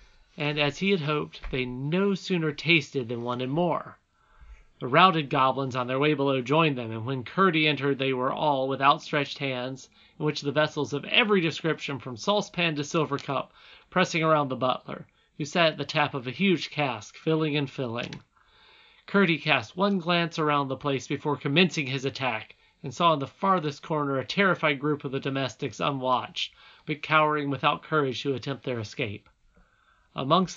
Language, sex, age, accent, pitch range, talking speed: English, male, 40-59, American, 135-165 Hz, 180 wpm